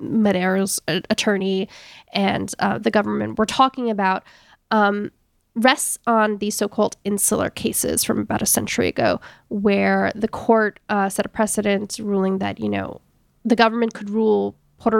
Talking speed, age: 150 wpm, 10-29